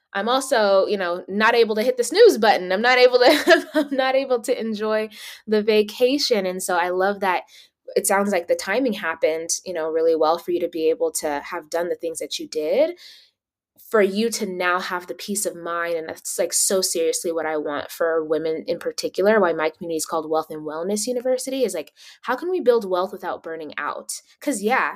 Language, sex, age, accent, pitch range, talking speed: English, female, 20-39, American, 170-250 Hz, 220 wpm